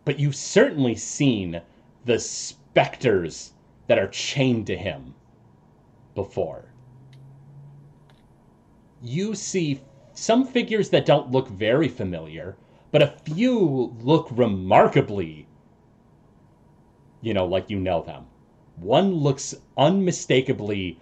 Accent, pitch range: American, 105-160 Hz